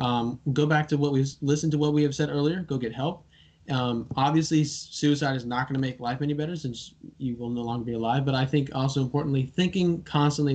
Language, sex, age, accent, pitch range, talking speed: English, male, 20-39, American, 125-145 Hz, 230 wpm